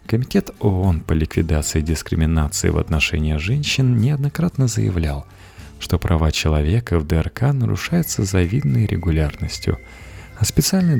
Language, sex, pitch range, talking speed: Russian, male, 80-110 Hz, 110 wpm